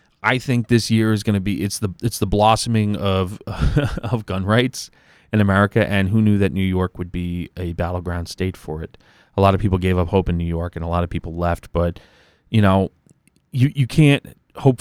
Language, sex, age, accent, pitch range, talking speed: English, male, 30-49, American, 90-110 Hz, 225 wpm